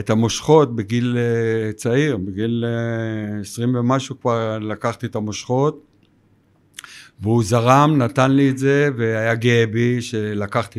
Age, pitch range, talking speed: 60-79, 105-130 Hz, 115 wpm